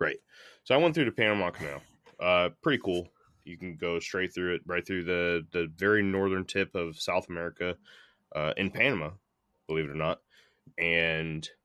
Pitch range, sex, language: 80-90 Hz, male, English